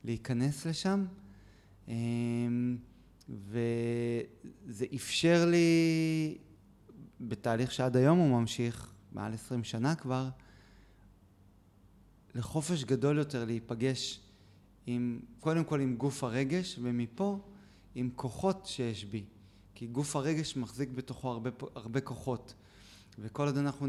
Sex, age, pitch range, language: male, 30-49, 115-145 Hz, Hebrew